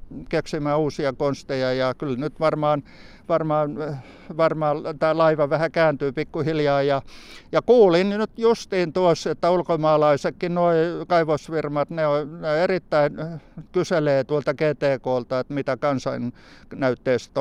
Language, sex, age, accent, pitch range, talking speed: Finnish, male, 60-79, native, 130-165 Hz, 115 wpm